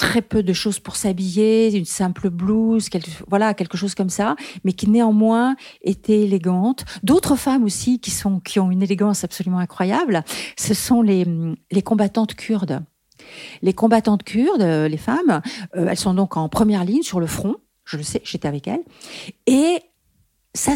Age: 50-69